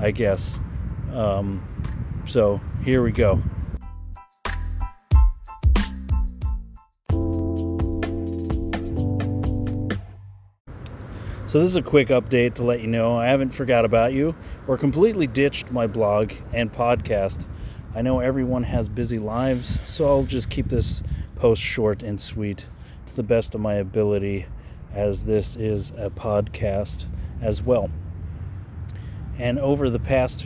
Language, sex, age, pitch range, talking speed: English, male, 30-49, 95-120 Hz, 120 wpm